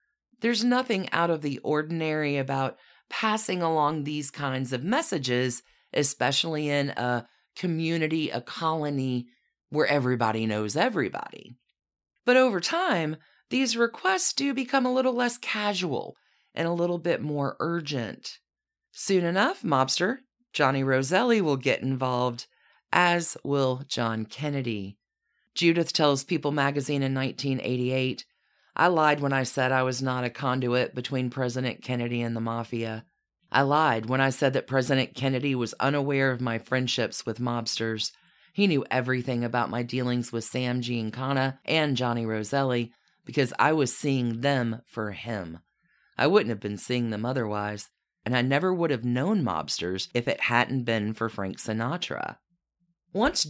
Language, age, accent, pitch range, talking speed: English, 40-59, American, 120-165 Hz, 145 wpm